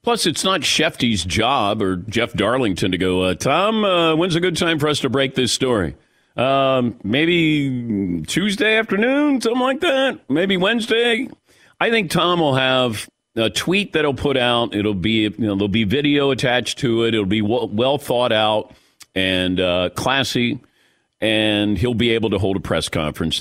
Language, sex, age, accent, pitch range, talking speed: English, male, 50-69, American, 110-170 Hz, 180 wpm